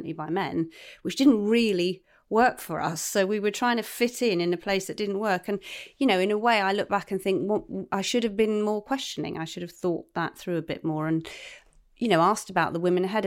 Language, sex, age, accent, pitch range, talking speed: English, female, 30-49, British, 160-200 Hz, 255 wpm